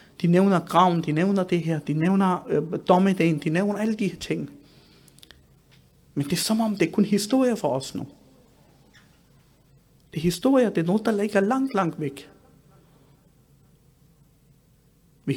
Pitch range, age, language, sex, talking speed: 145-195 Hz, 50-69, Danish, male, 155 wpm